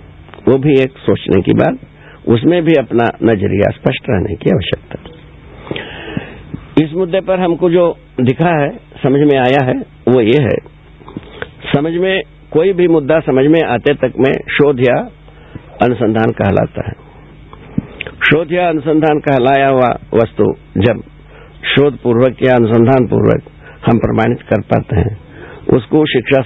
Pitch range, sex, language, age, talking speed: 105-155 Hz, male, Hindi, 60-79, 145 wpm